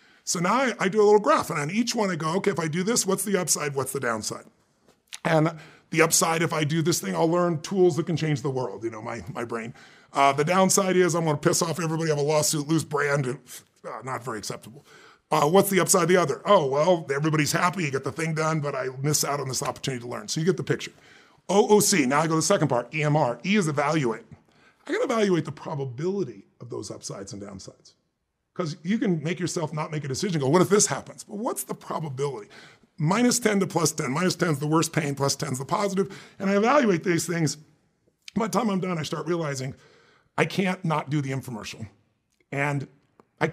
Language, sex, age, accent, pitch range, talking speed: English, female, 30-49, American, 140-185 Hz, 240 wpm